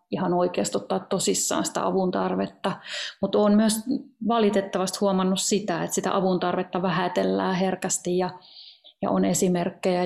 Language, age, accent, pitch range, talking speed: Finnish, 30-49, native, 175-200 Hz, 125 wpm